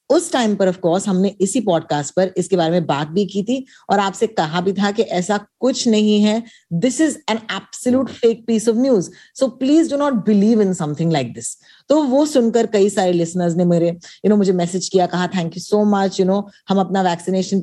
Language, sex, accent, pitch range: Hindi, female, native, 180-230 Hz